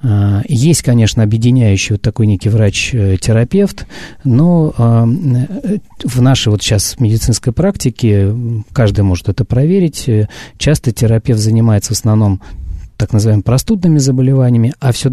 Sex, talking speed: male, 115 wpm